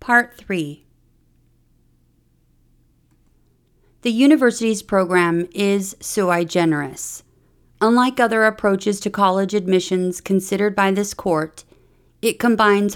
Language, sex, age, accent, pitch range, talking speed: English, female, 40-59, American, 175-220 Hz, 95 wpm